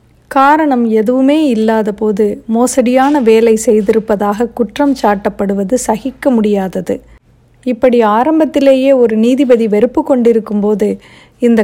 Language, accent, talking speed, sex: Tamil, native, 90 wpm, female